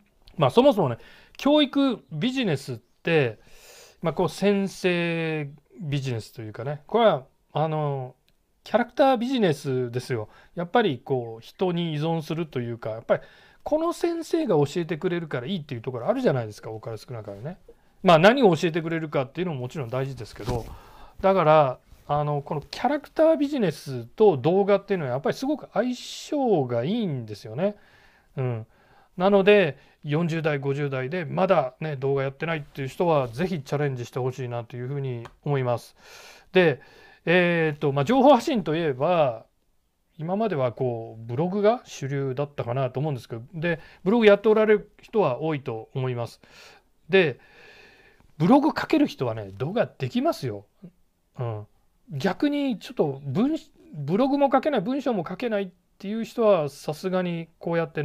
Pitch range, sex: 135-205 Hz, male